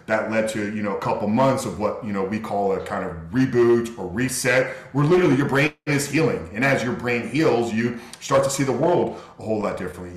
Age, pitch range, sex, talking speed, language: 40-59, 100-120 Hz, male, 240 wpm, English